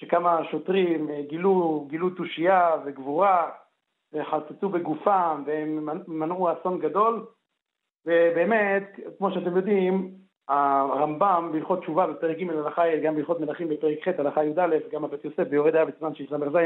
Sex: male